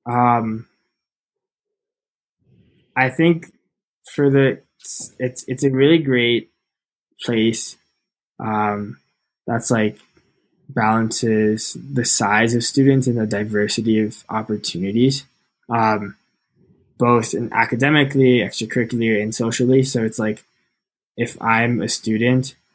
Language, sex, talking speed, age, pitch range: English, male, 100 wpm, 10-29, 110-125 Hz